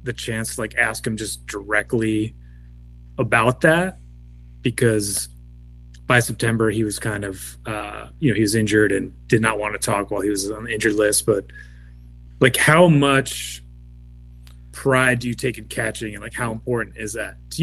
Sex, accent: male, American